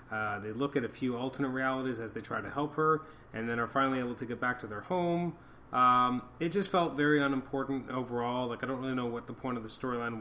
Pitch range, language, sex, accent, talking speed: 120-140 Hz, English, male, American, 255 wpm